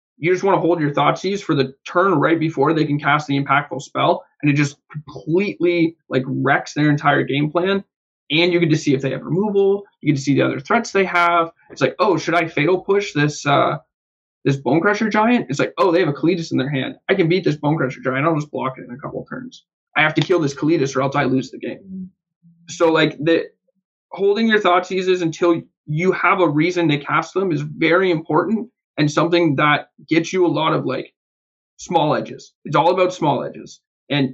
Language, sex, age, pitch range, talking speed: English, male, 20-39, 145-180 Hz, 230 wpm